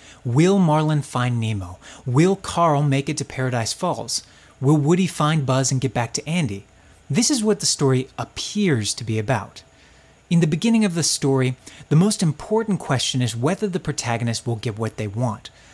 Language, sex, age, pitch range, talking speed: English, male, 30-49, 115-160 Hz, 185 wpm